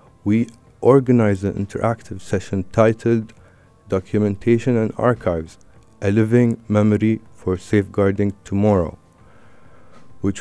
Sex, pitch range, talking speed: male, 95-115 Hz, 90 wpm